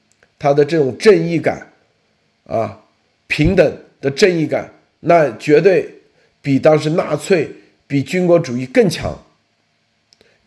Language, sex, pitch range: Chinese, male, 125-185 Hz